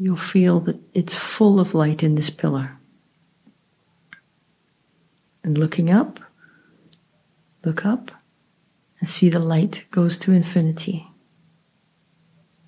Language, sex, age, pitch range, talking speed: English, female, 40-59, 155-185 Hz, 105 wpm